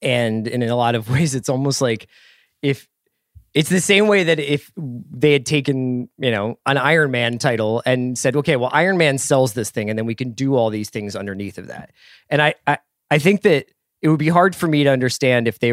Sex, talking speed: male, 235 wpm